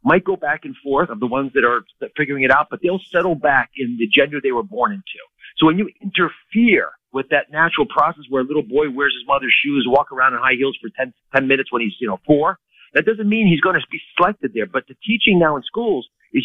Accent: American